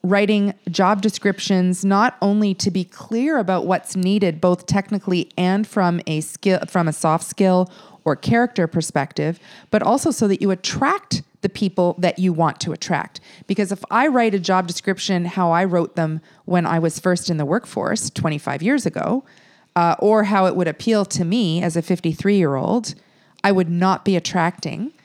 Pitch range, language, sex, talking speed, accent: 170-200 Hz, English, female, 180 wpm, American